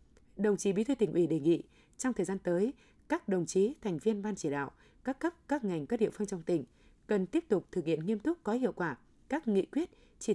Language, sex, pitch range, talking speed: Vietnamese, female, 175-225 Hz, 250 wpm